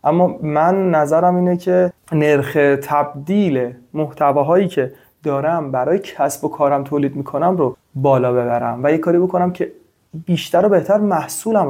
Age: 30-49